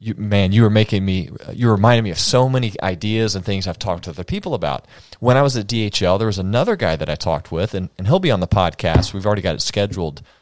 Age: 30-49